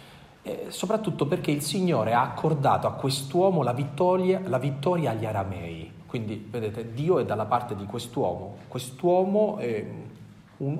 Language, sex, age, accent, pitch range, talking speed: Italian, male, 30-49, native, 110-155 Hz, 135 wpm